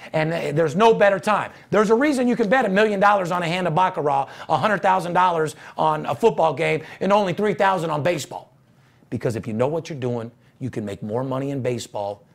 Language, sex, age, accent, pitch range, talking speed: English, male, 40-59, American, 150-240 Hz, 210 wpm